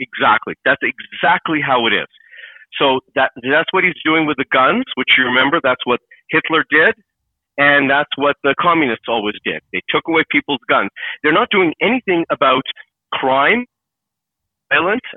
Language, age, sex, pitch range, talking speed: English, 40-59, male, 150-185 Hz, 160 wpm